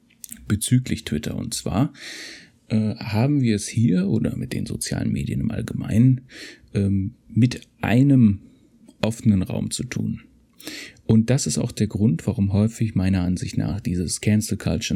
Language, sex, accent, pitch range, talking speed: German, male, German, 95-115 Hz, 150 wpm